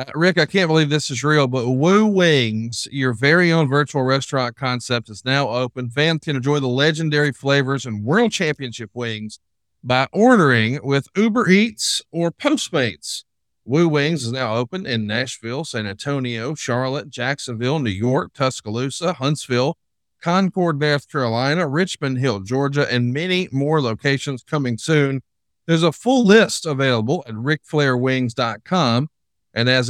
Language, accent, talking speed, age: English, American, 145 wpm, 40-59